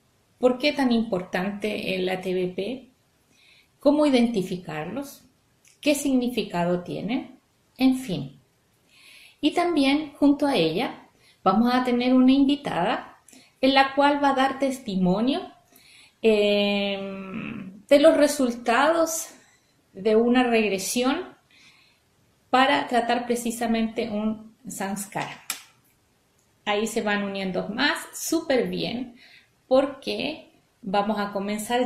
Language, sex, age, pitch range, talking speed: Spanish, female, 30-49, 205-275 Hz, 100 wpm